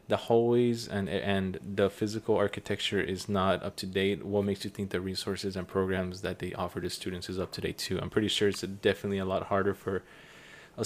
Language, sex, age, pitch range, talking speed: English, male, 20-39, 95-110 Hz, 225 wpm